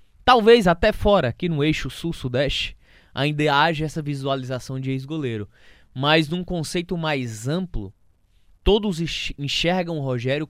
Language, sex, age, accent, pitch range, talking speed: Portuguese, male, 20-39, Brazilian, 130-180 Hz, 125 wpm